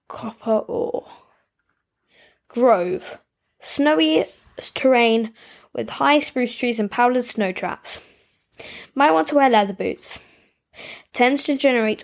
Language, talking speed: English, 110 wpm